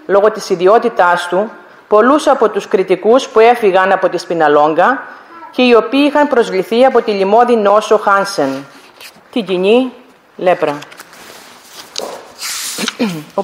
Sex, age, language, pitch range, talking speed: female, 30-49, Greek, 185-250 Hz, 120 wpm